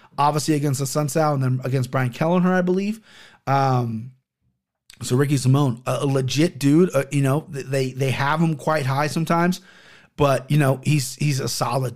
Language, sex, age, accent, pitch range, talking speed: English, male, 30-49, American, 135-175 Hz, 180 wpm